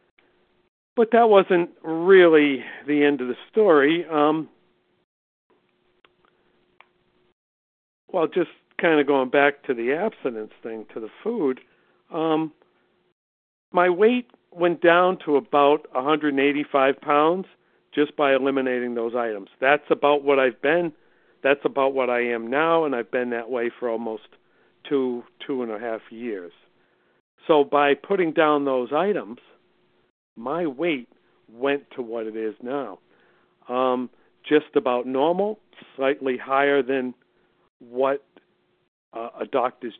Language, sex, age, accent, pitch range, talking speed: English, male, 50-69, American, 125-160 Hz, 130 wpm